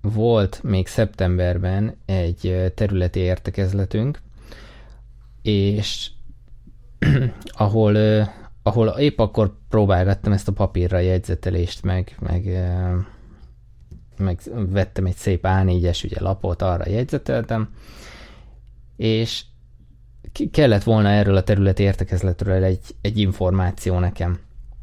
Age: 20-39